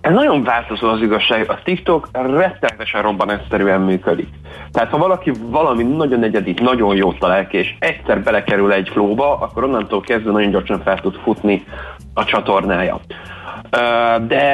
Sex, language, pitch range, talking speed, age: male, Hungarian, 100-130 Hz, 150 wpm, 30-49